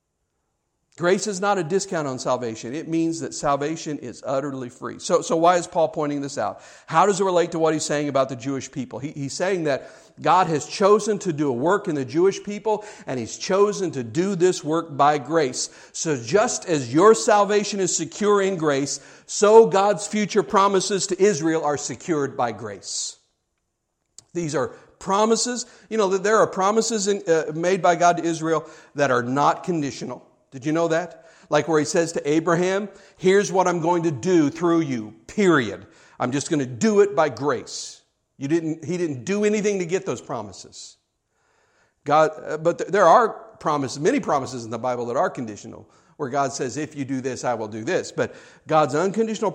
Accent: American